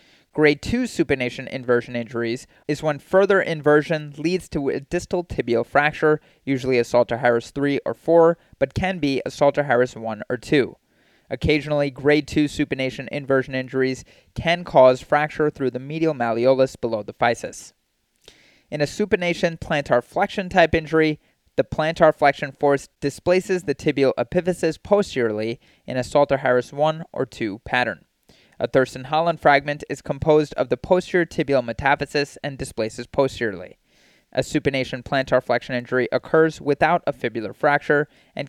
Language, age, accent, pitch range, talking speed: English, 20-39, American, 130-160 Hz, 150 wpm